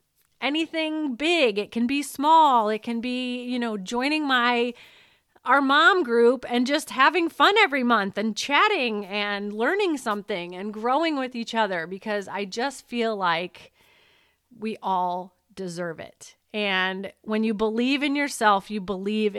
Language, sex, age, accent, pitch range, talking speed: English, female, 30-49, American, 190-245 Hz, 150 wpm